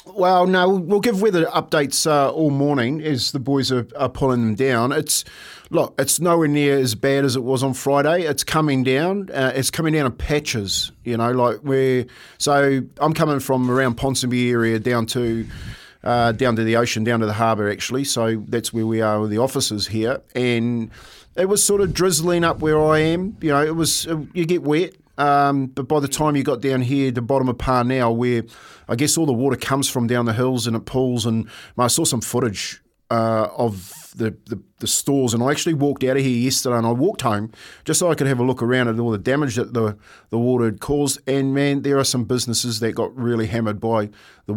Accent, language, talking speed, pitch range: Australian, English, 230 wpm, 115-145 Hz